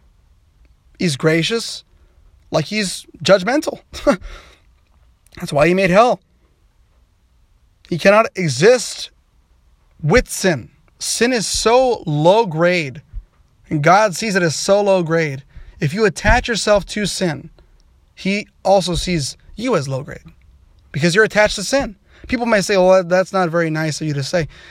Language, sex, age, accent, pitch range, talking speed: English, male, 30-49, American, 145-230 Hz, 140 wpm